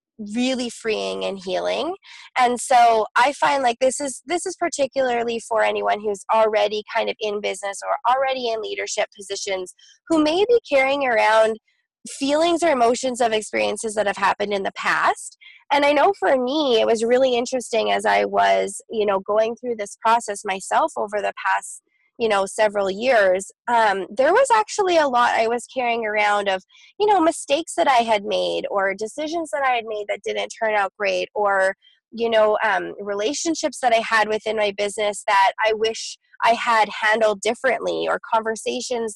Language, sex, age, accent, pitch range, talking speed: English, female, 20-39, American, 210-265 Hz, 180 wpm